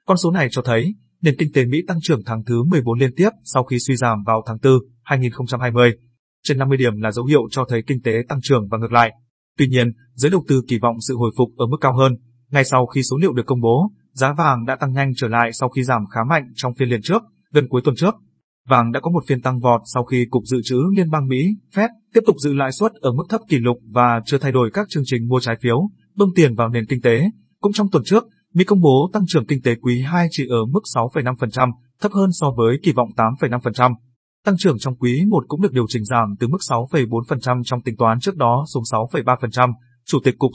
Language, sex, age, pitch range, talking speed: Vietnamese, male, 20-39, 120-155 Hz, 250 wpm